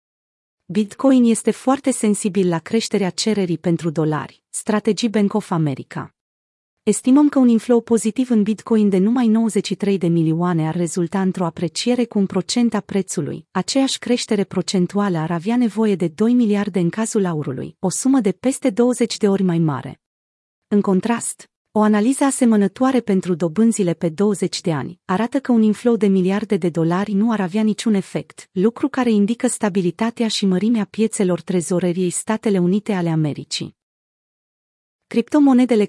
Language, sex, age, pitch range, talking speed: Romanian, female, 30-49, 180-225 Hz, 155 wpm